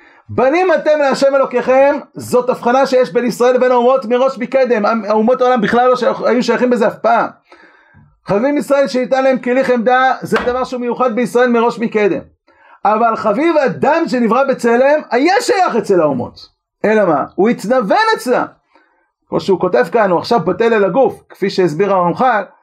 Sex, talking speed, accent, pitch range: male, 165 wpm, native, 210-265 Hz